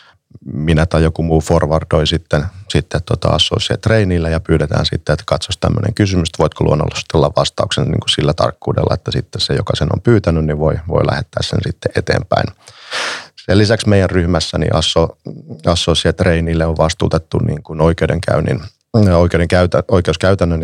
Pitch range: 80-100 Hz